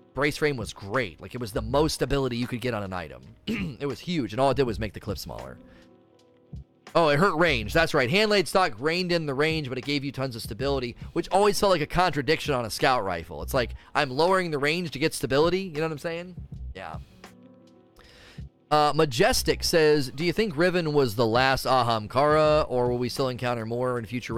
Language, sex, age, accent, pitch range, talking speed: English, male, 30-49, American, 115-155 Hz, 225 wpm